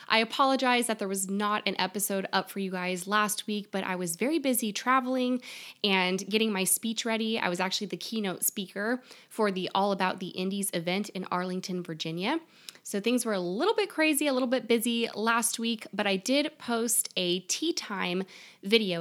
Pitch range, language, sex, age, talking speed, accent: 185-235 Hz, English, female, 20-39, 195 wpm, American